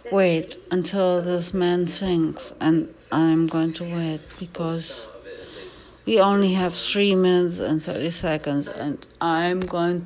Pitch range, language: 170-230 Hz, English